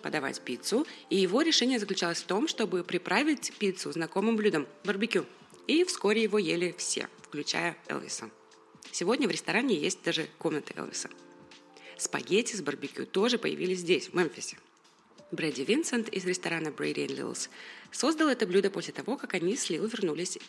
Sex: female